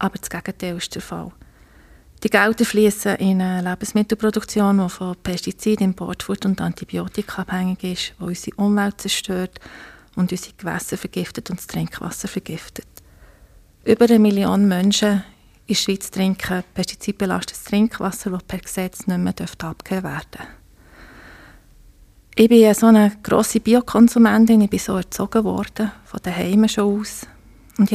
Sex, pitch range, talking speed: female, 185-215 Hz, 145 wpm